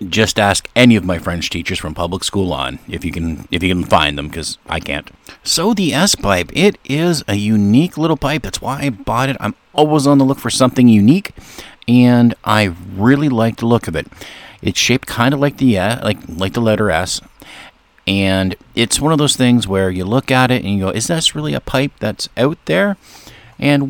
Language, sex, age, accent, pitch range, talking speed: English, male, 50-69, American, 95-135 Hz, 220 wpm